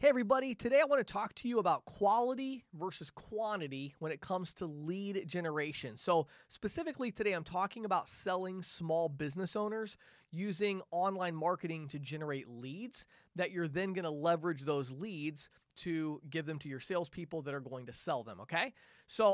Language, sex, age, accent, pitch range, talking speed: English, male, 30-49, American, 145-180 Hz, 175 wpm